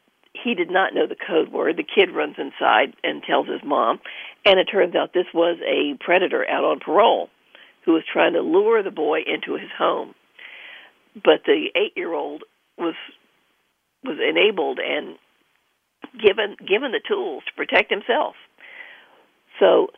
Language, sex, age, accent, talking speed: English, female, 50-69, American, 155 wpm